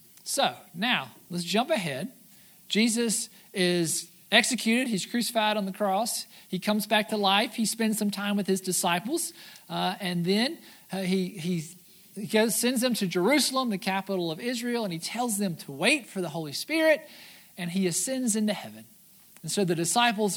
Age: 50-69